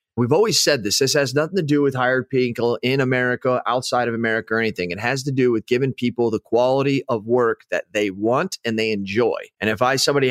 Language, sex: English, male